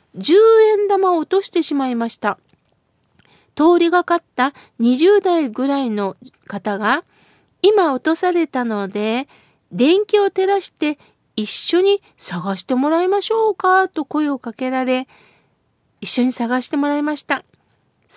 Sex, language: female, Japanese